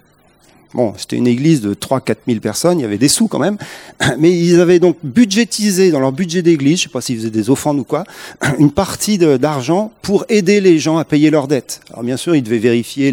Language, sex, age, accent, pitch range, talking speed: French, male, 40-59, French, 130-175 Hz, 235 wpm